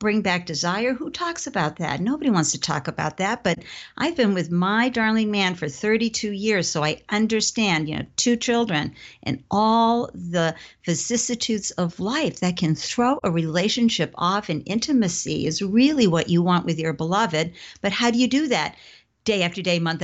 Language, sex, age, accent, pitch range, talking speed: English, female, 50-69, American, 165-220 Hz, 185 wpm